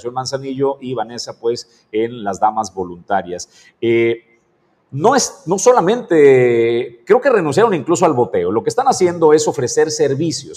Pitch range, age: 120-170 Hz, 50-69